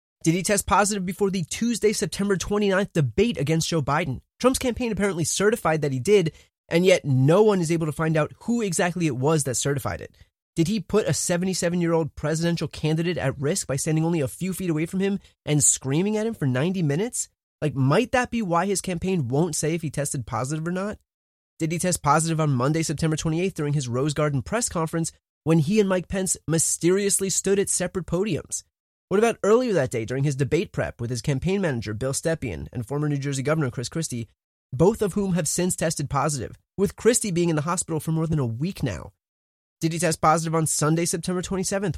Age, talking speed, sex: 20-39, 215 wpm, male